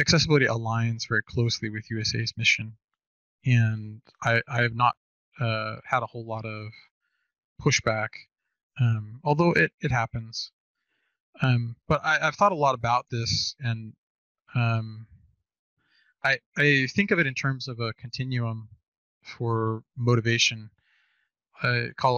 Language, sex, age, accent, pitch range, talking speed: English, male, 20-39, American, 115-130 Hz, 135 wpm